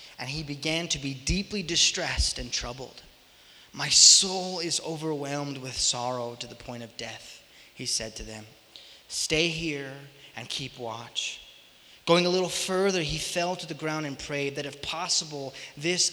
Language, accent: English, American